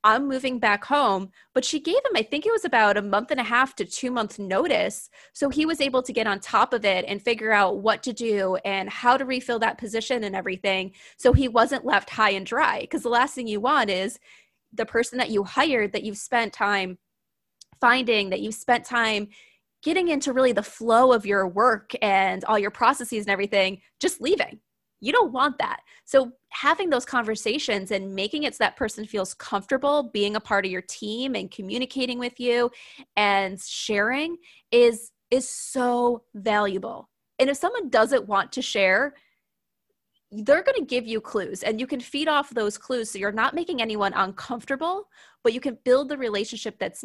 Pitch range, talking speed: 205-260 Hz, 200 wpm